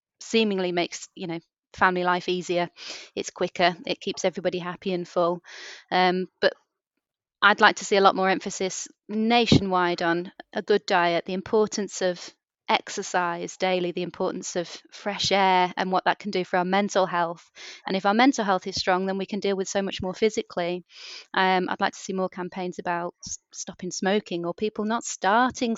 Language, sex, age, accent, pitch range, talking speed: English, female, 30-49, British, 180-205 Hz, 185 wpm